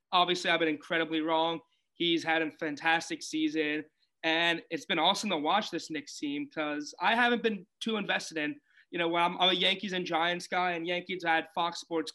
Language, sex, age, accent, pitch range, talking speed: English, male, 20-39, American, 160-185 Hz, 205 wpm